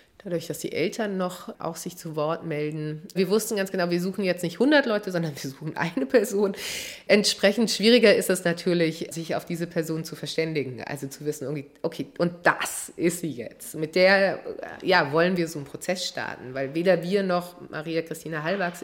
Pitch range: 155-190 Hz